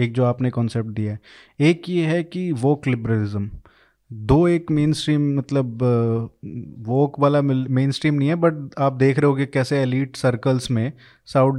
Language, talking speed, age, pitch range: Hindi, 160 wpm, 20-39, 125-160 Hz